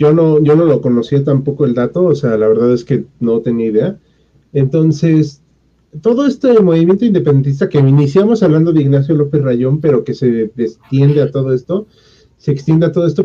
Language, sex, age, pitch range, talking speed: Spanish, male, 40-59, 140-195 Hz, 190 wpm